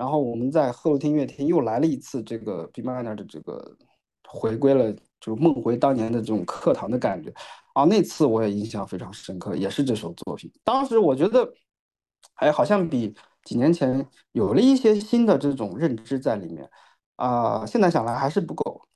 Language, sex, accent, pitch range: Chinese, male, native, 115-165 Hz